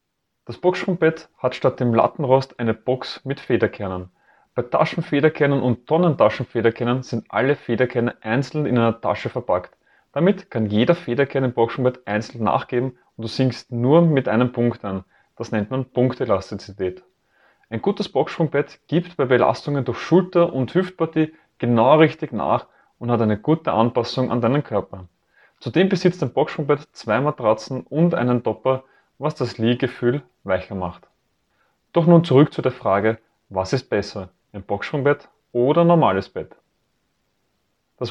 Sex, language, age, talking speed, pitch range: male, German, 30-49, 145 wpm, 115-145 Hz